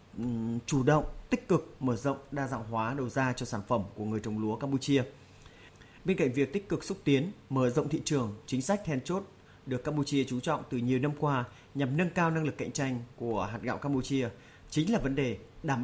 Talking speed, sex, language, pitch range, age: 220 wpm, male, Vietnamese, 115-145 Hz, 20-39